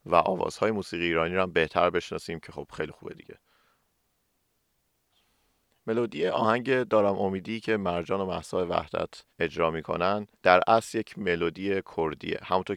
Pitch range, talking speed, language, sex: 85-105 Hz, 140 wpm, Persian, male